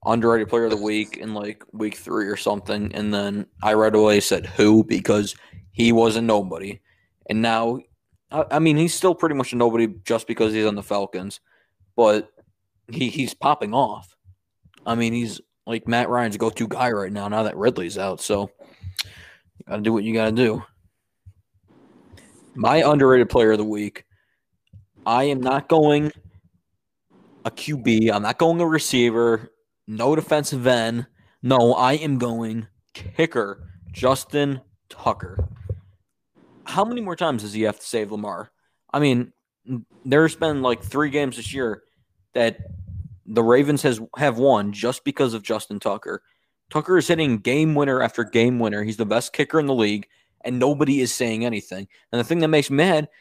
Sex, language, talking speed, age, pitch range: male, English, 170 wpm, 20-39, 105-140 Hz